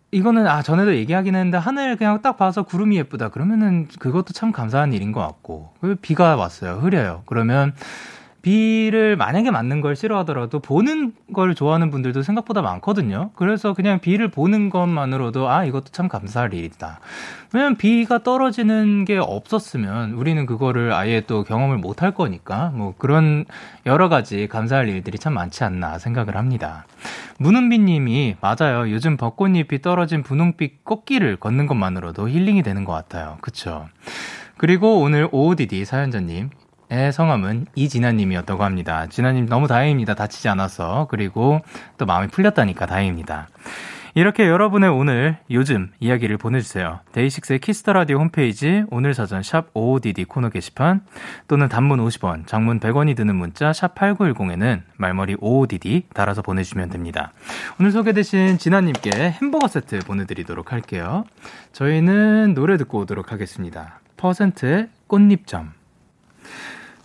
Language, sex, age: Korean, male, 20-39